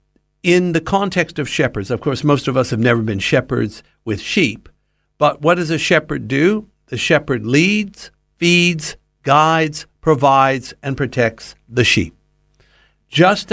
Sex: male